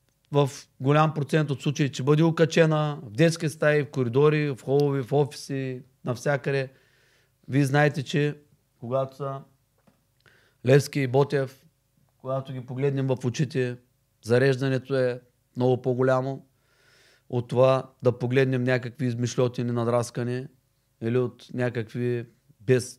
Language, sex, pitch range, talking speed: Bulgarian, male, 125-145 Hz, 120 wpm